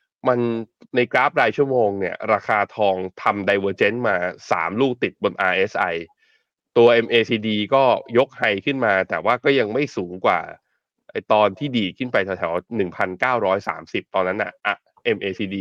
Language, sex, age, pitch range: Thai, male, 20-39, 100-135 Hz